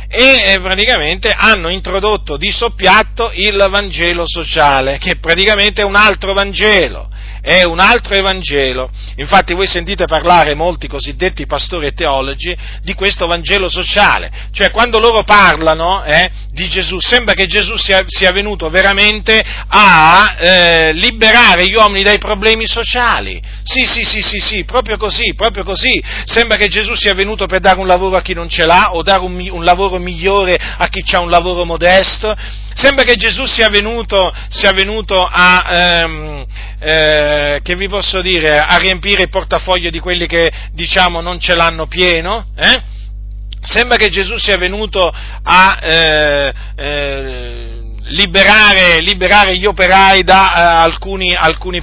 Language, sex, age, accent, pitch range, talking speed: Italian, male, 40-59, native, 170-200 Hz, 155 wpm